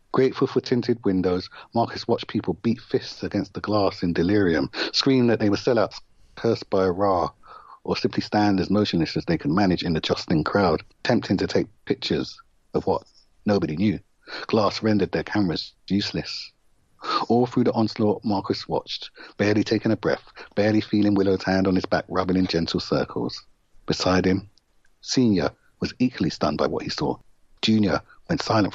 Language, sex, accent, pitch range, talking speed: English, male, British, 95-110 Hz, 175 wpm